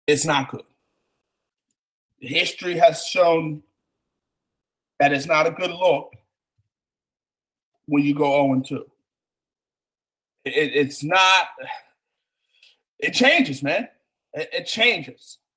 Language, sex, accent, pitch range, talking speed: English, male, American, 150-230 Hz, 100 wpm